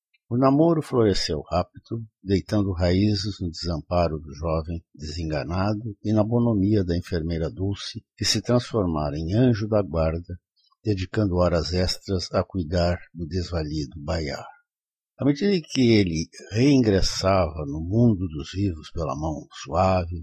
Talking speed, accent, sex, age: 135 wpm, Brazilian, male, 60-79